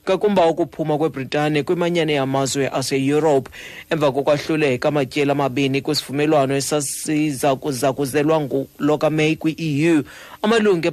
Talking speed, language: 105 wpm, English